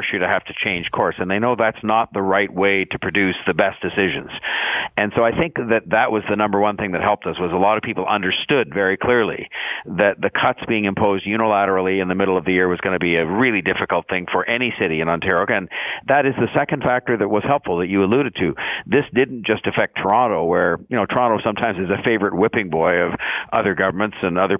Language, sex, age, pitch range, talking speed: English, male, 50-69, 95-115 Hz, 240 wpm